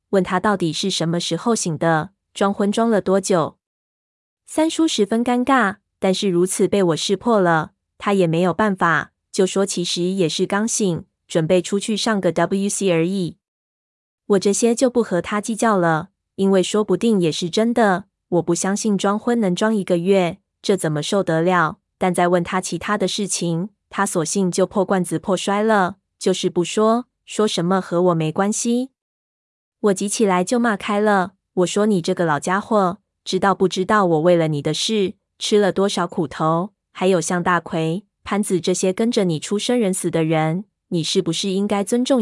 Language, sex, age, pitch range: Chinese, female, 20-39, 175-210 Hz